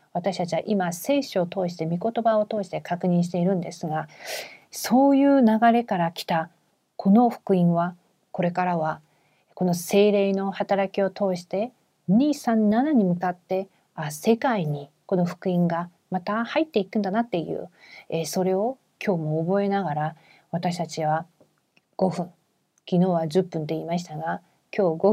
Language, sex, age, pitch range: Korean, female, 40-59, 170-200 Hz